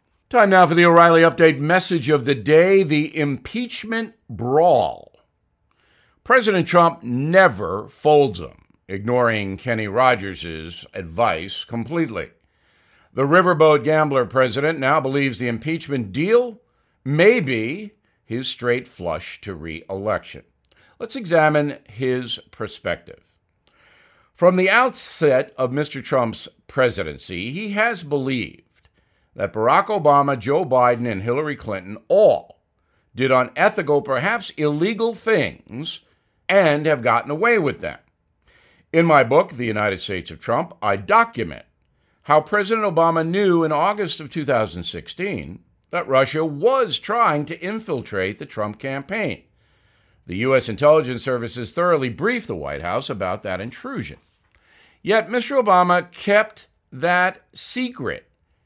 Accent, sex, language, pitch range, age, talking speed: American, male, English, 120-180 Hz, 50-69, 120 wpm